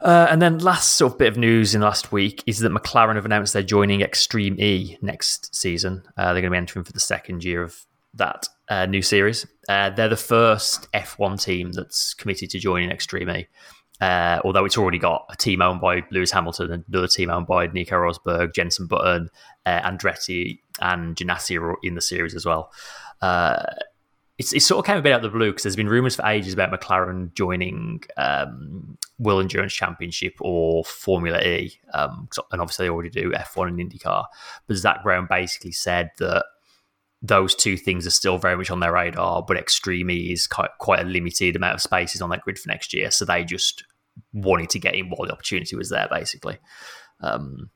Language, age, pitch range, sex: English, 20-39, 90-100 Hz, male